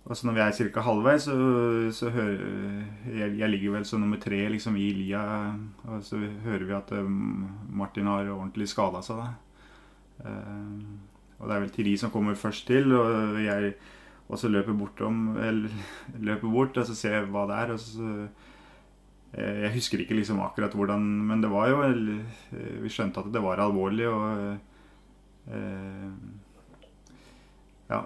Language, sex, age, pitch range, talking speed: Swedish, male, 30-49, 100-110 Hz, 150 wpm